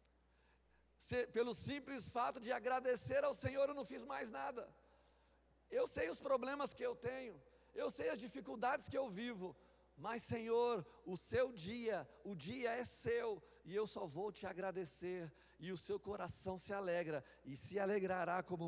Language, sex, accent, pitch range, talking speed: Portuguese, male, Brazilian, 185-260 Hz, 165 wpm